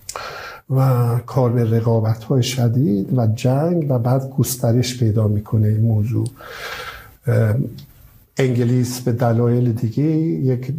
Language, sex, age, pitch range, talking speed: Persian, male, 50-69, 115-135 Hz, 110 wpm